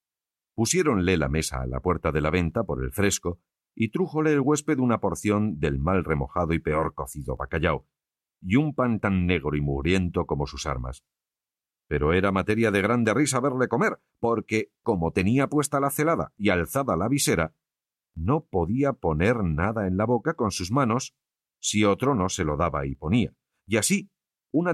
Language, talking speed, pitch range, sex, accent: Spanish, 180 wpm, 80-125 Hz, male, Spanish